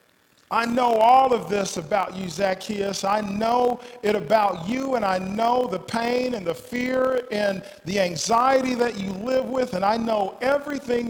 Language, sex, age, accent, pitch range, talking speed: English, male, 40-59, American, 155-215 Hz, 175 wpm